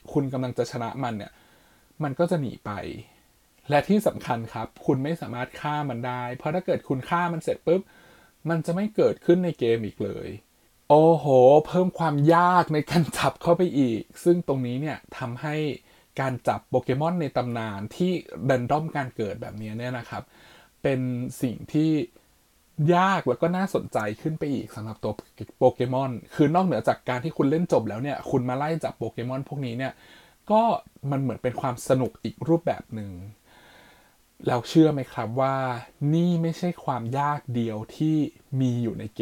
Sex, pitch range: male, 120-160 Hz